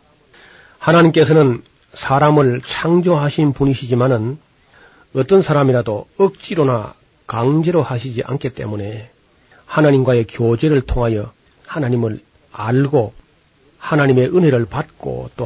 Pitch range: 120-150 Hz